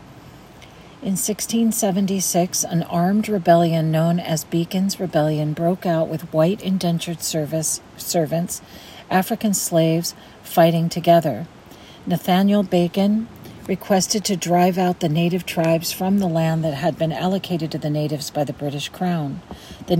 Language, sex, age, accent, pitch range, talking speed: English, female, 50-69, American, 155-180 Hz, 130 wpm